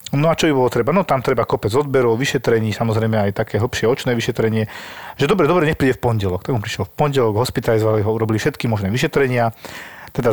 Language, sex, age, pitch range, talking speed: Slovak, male, 40-59, 110-135 Hz, 215 wpm